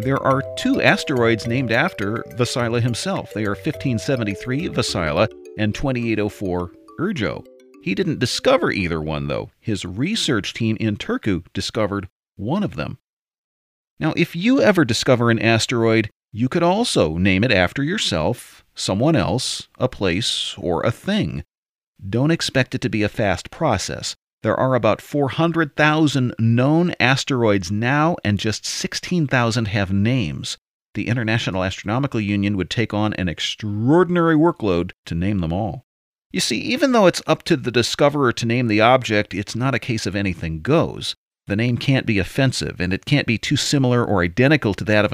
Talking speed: 160 wpm